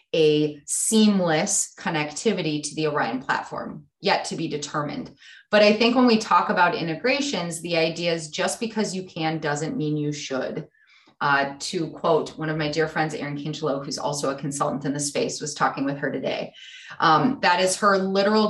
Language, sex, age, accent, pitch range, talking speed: English, female, 20-39, American, 160-210 Hz, 185 wpm